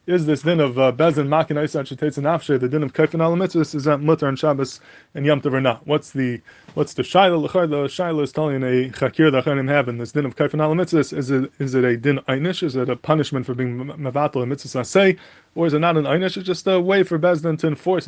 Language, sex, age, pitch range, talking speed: English, male, 20-39, 130-155 Hz, 235 wpm